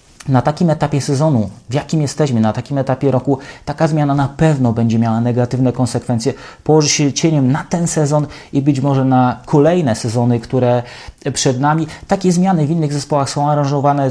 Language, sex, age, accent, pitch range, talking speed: English, male, 30-49, Polish, 125-150 Hz, 175 wpm